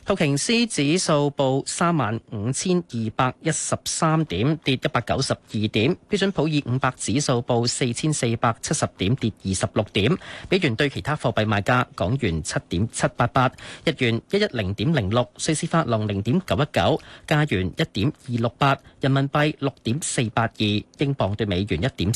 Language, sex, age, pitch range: Chinese, male, 40-59, 110-150 Hz